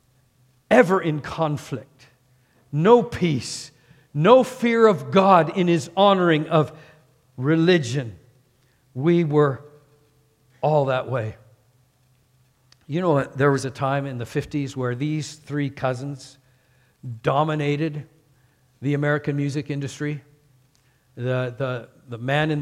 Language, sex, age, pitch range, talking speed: English, male, 50-69, 140-190 Hz, 110 wpm